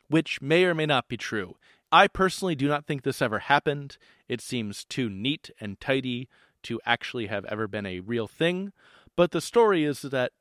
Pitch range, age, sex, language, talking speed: 120-155 Hz, 40-59, male, English, 195 wpm